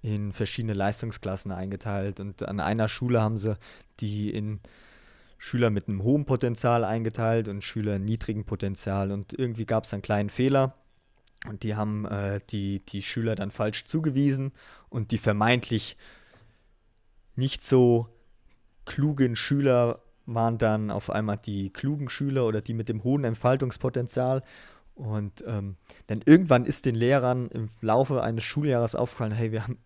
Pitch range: 105-130 Hz